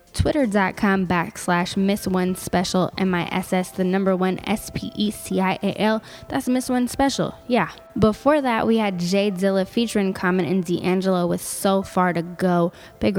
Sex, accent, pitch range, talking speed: female, American, 185-225 Hz, 150 wpm